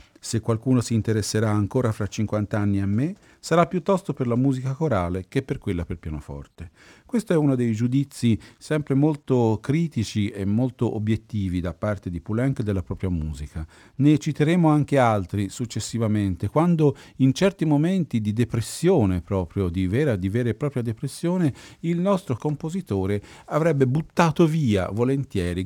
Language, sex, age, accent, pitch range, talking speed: Italian, male, 50-69, native, 100-145 Hz, 150 wpm